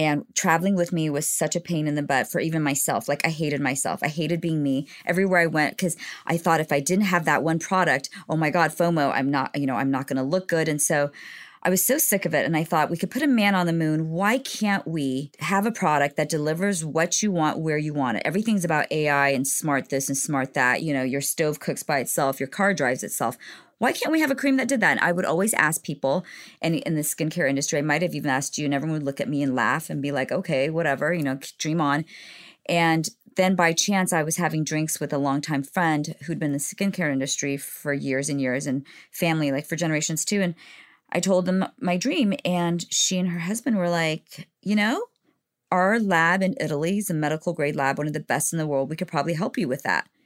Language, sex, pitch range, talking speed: English, female, 145-180 Hz, 255 wpm